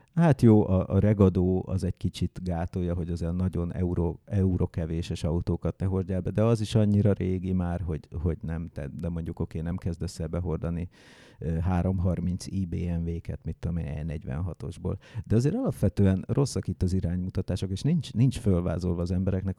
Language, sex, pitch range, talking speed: English, male, 90-110 Hz, 160 wpm